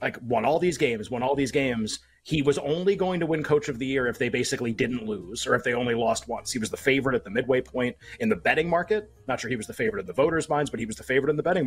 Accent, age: American, 30-49